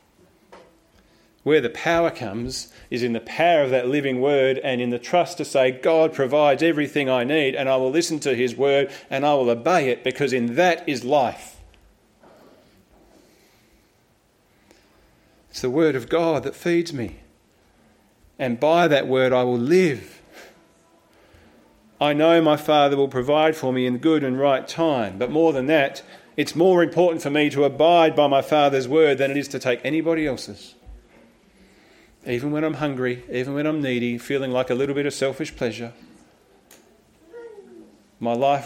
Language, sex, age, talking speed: English, male, 40-59, 170 wpm